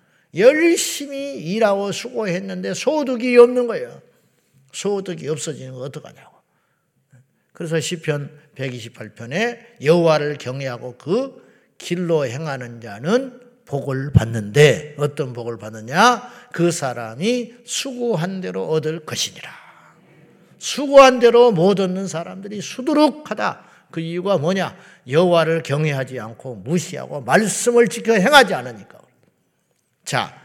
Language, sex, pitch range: Korean, male, 150-235 Hz